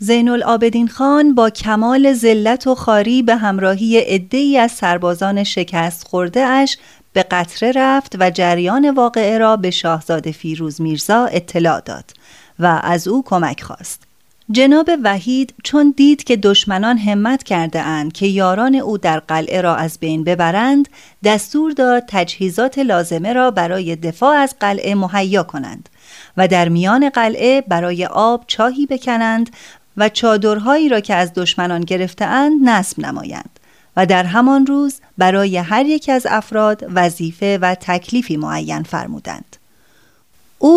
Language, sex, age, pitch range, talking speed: Persian, female, 30-49, 180-255 Hz, 140 wpm